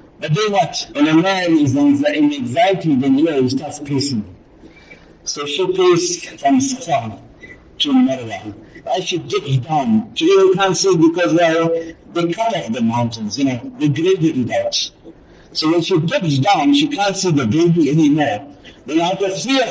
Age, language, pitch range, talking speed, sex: 60-79, English, 165-250 Hz, 180 wpm, male